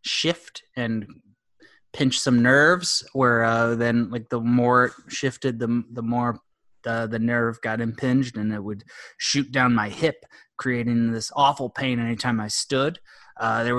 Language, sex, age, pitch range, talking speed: English, male, 20-39, 110-125 Hz, 160 wpm